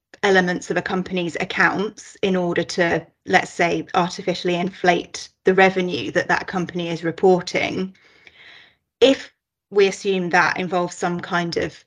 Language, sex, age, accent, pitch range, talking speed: English, female, 30-49, British, 175-190 Hz, 135 wpm